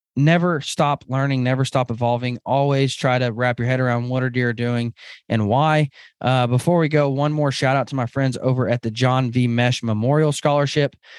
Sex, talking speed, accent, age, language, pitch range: male, 210 wpm, American, 20-39, English, 125-145 Hz